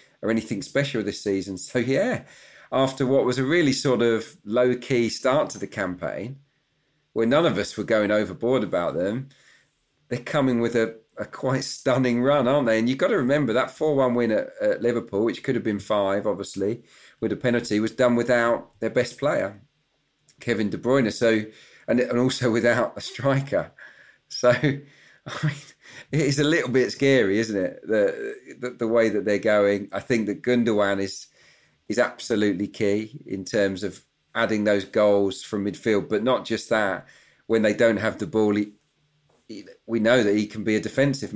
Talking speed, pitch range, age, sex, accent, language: 185 wpm, 105-130 Hz, 40-59, male, British, English